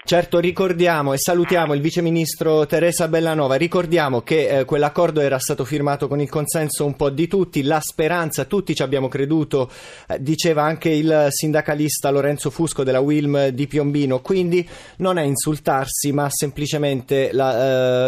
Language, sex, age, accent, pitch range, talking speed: Italian, male, 30-49, native, 140-170 Hz, 155 wpm